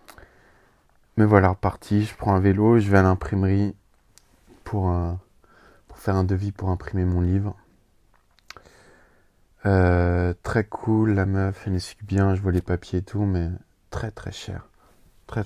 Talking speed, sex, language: 155 wpm, male, French